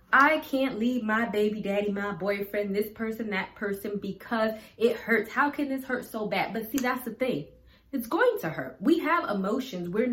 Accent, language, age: American, English, 20-39